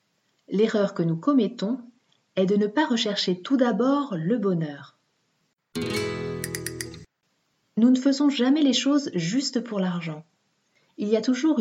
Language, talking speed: French, 135 wpm